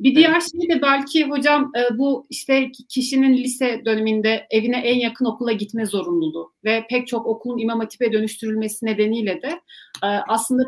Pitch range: 220-270 Hz